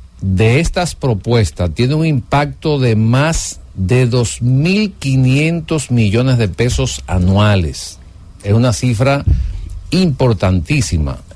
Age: 60-79